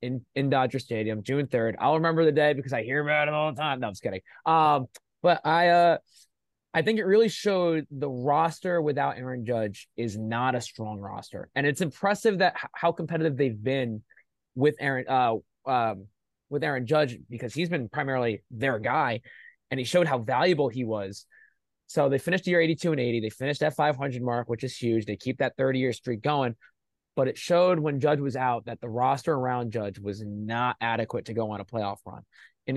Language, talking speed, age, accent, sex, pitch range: English, 210 wpm, 20-39, American, male, 120-150 Hz